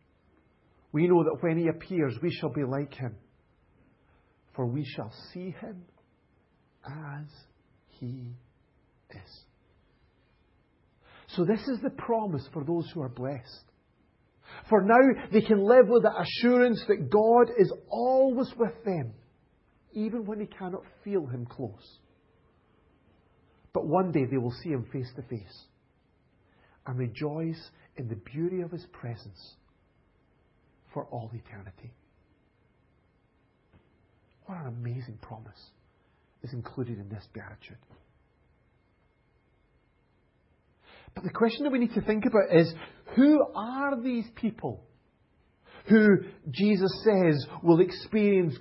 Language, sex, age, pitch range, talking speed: English, male, 50-69, 120-200 Hz, 120 wpm